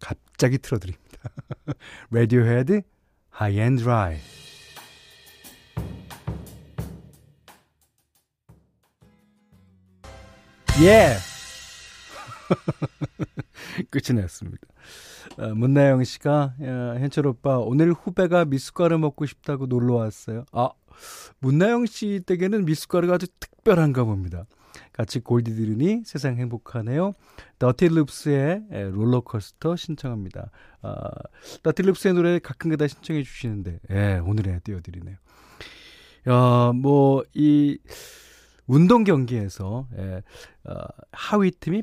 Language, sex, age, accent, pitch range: Korean, male, 40-59, native, 110-160 Hz